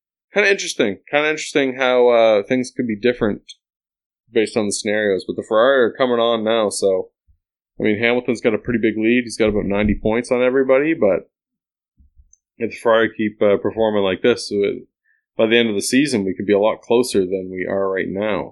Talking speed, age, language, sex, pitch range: 210 wpm, 20-39, English, male, 100-130 Hz